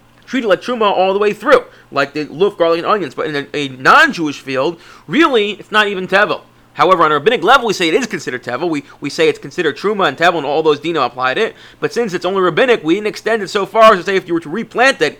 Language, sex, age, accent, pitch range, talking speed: English, male, 30-49, American, 145-215 Hz, 275 wpm